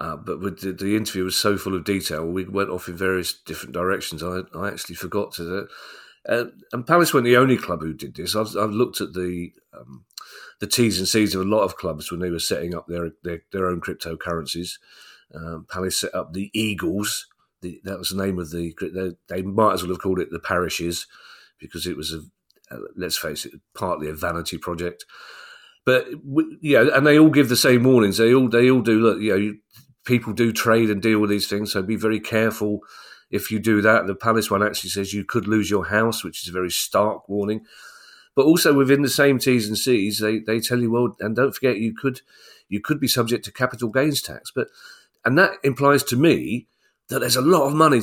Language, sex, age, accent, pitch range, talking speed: English, male, 40-59, British, 90-120 Hz, 225 wpm